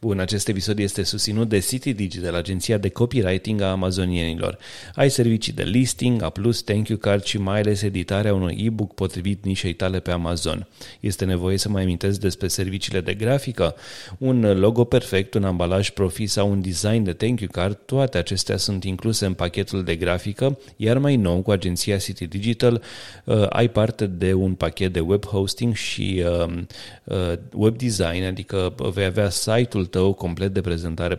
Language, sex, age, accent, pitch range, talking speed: Romanian, male, 30-49, native, 95-110 Hz, 175 wpm